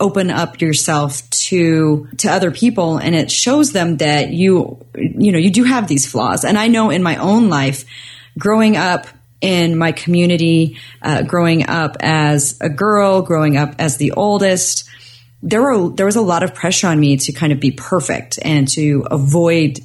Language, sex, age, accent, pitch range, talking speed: English, female, 30-49, American, 145-190 Hz, 185 wpm